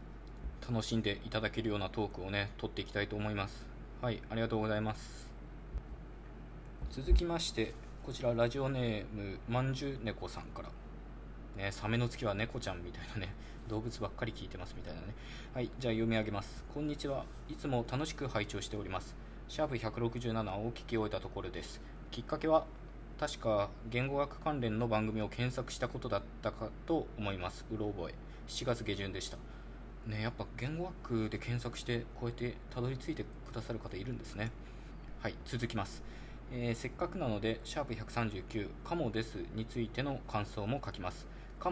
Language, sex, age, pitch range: Japanese, male, 20-39, 105-125 Hz